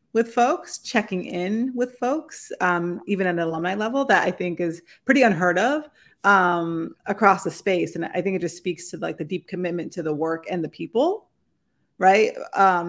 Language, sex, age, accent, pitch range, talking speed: English, female, 30-49, American, 170-195 Hz, 195 wpm